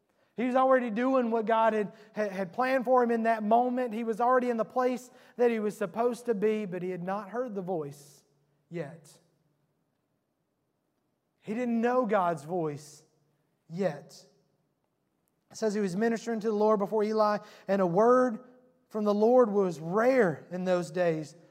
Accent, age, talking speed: American, 30-49, 170 wpm